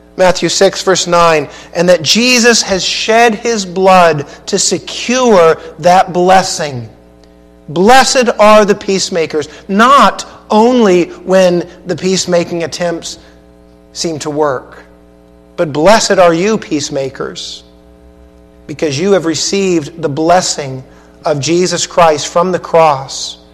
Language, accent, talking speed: English, American, 115 wpm